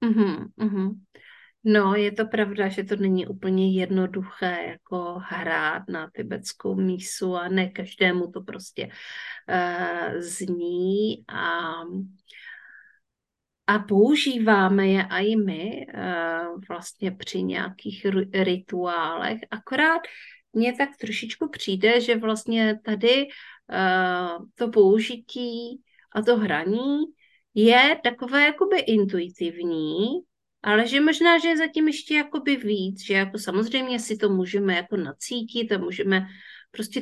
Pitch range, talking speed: 190-245 Hz, 115 wpm